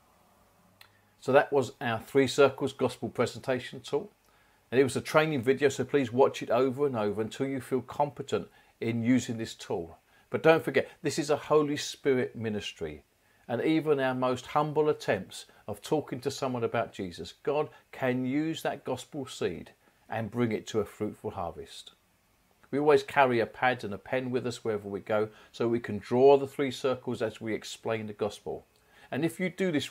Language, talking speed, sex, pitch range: English, 190 wpm, male, 115-145 Hz